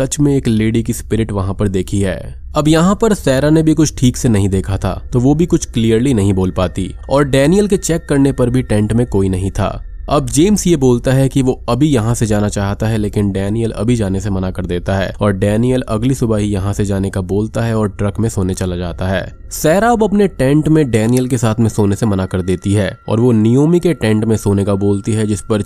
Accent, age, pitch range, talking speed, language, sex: native, 20-39, 100-140 Hz, 245 wpm, Hindi, male